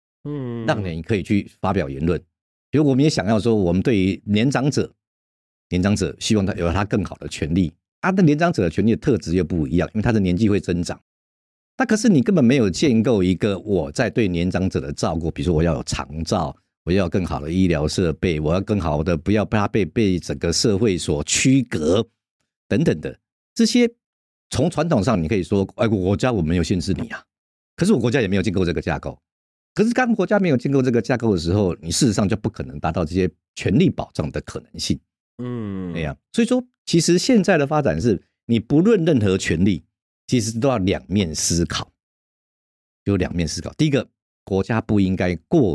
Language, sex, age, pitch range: Chinese, male, 50-69, 85-120 Hz